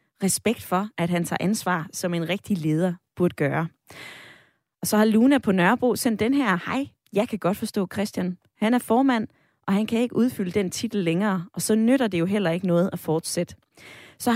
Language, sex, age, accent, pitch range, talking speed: Danish, female, 20-39, native, 165-210 Hz, 205 wpm